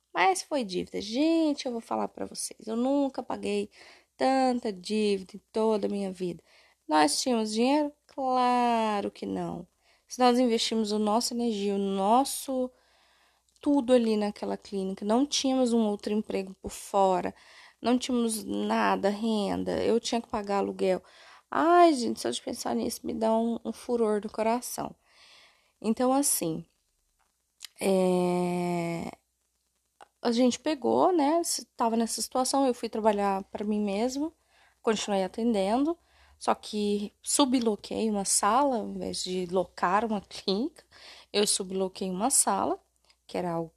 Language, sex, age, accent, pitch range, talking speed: Portuguese, female, 20-39, Brazilian, 195-265 Hz, 140 wpm